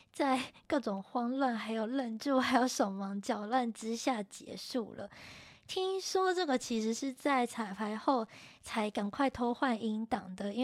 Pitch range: 215-275 Hz